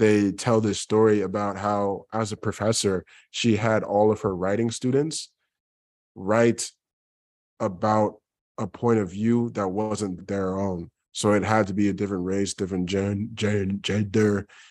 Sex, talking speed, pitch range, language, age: male, 155 wpm, 100-115 Hz, English, 20-39